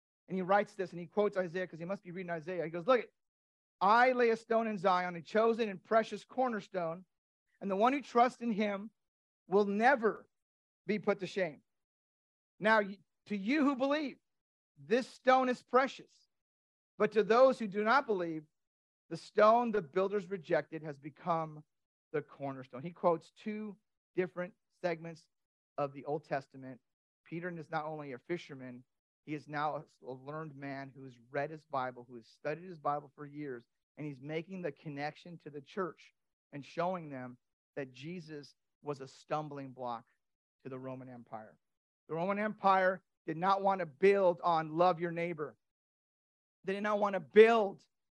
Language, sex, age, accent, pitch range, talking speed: English, male, 50-69, American, 150-210 Hz, 170 wpm